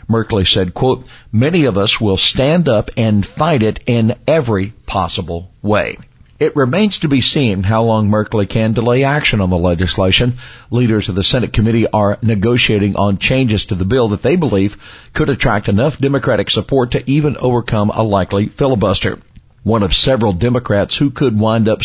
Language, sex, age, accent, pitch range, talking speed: English, male, 50-69, American, 100-130 Hz, 175 wpm